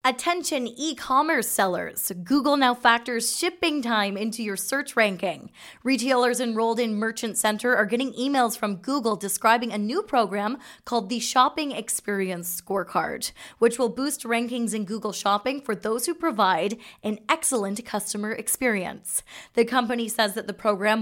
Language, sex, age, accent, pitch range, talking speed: English, female, 20-39, American, 205-260 Hz, 150 wpm